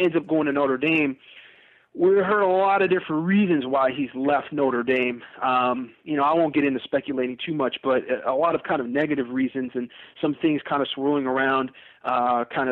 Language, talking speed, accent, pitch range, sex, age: English, 210 wpm, American, 130-155 Hz, male, 30-49